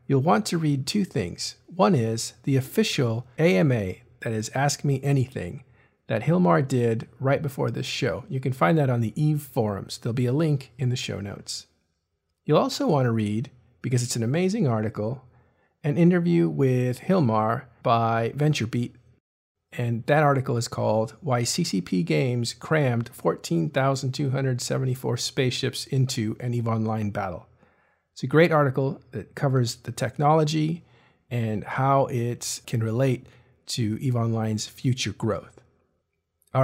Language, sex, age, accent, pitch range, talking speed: English, male, 50-69, American, 115-150 Hz, 145 wpm